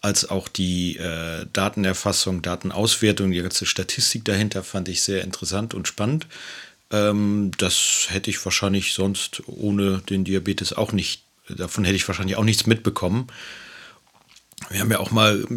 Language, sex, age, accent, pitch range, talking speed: German, male, 40-59, German, 95-105 Hz, 155 wpm